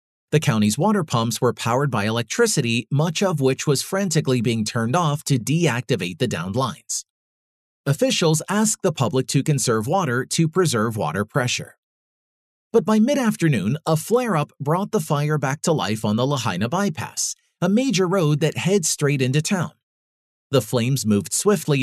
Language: English